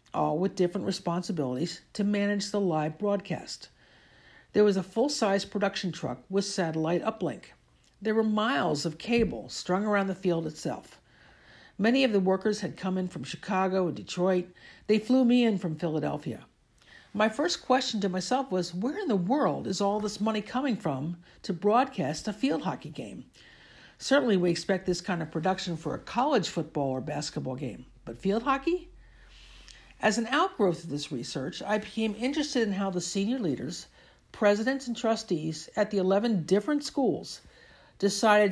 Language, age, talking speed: English, 60-79, 165 wpm